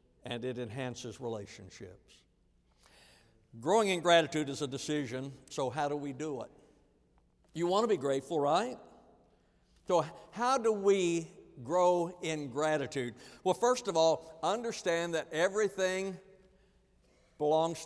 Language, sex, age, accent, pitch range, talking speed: English, male, 60-79, American, 140-185 Hz, 125 wpm